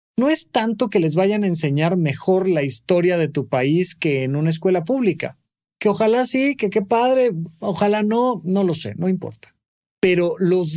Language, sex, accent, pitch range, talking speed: Spanish, male, Mexican, 145-210 Hz, 190 wpm